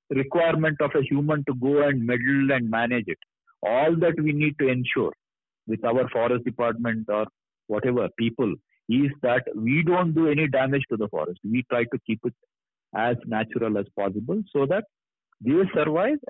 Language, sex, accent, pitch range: Telugu, male, native, 110-145 Hz